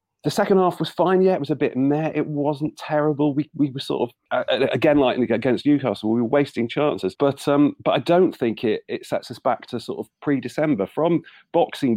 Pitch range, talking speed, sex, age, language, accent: 120-160 Hz, 225 wpm, male, 40-59, English, British